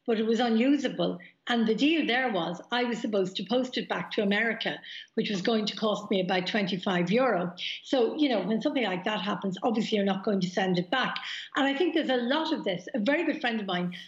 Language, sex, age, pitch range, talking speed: English, female, 60-79, 200-255 Hz, 245 wpm